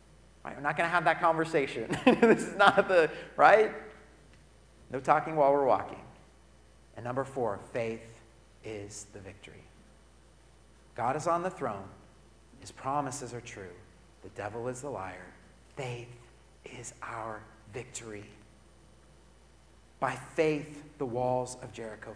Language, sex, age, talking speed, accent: English, male, 40-59, 135 wpm, American